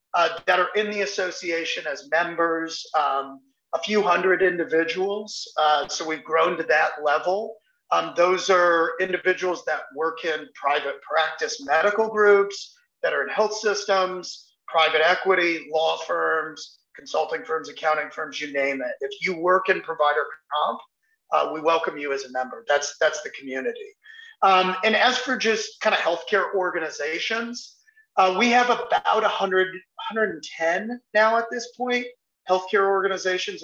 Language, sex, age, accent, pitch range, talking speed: English, male, 40-59, American, 160-215 Hz, 155 wpm